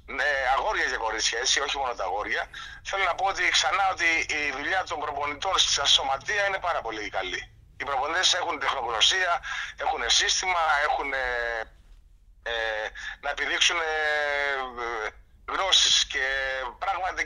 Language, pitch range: Greek, 115-170 Hz